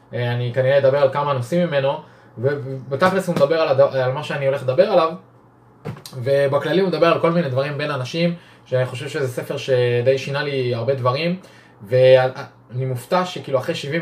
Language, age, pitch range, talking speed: Hebrew, 20-39, 125-160 Hz, 165 wpm